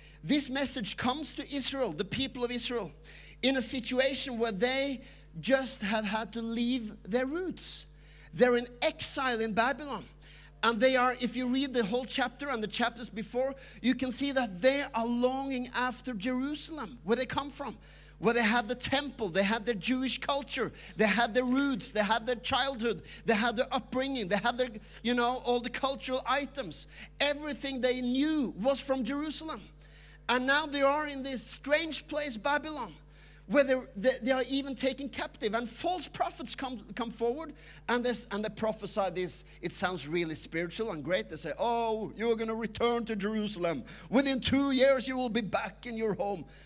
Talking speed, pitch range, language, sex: 180 wpm, 225-275 Hz, English, male